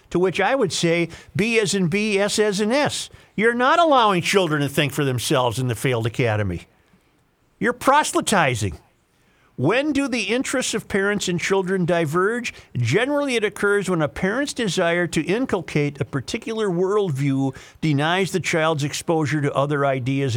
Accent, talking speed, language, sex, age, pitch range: American, 160 wpm, English, male, 50-69, 120-180 Hz